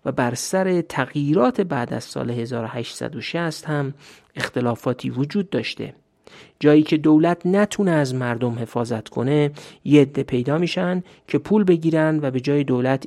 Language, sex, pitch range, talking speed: Persian, male, 130-170 Hz, 140 wpm